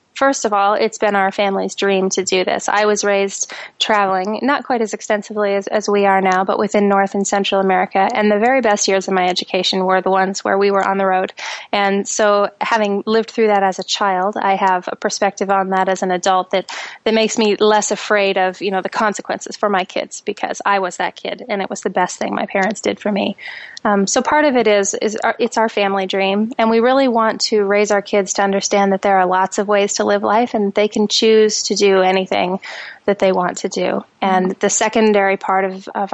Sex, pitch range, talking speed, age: female, 195-215 Hz, 240 wpm, 20-39